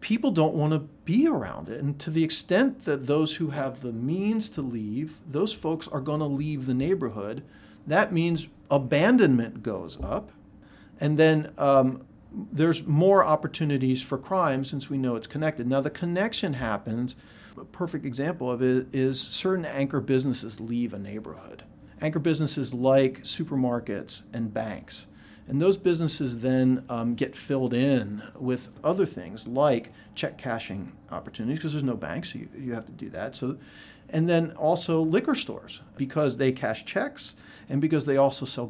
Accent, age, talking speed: American, 40-59, 165 wpm